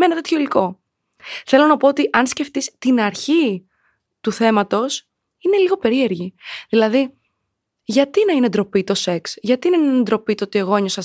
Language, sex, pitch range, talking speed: Greek, female, 190-255 Hz, 175 wpm